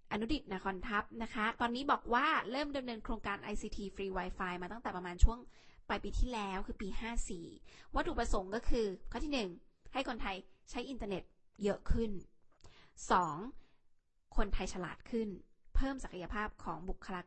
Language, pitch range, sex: Thai, 190-240 Hz, female